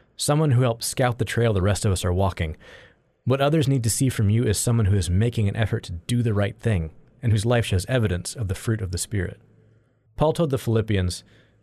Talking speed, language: 235 wpm, English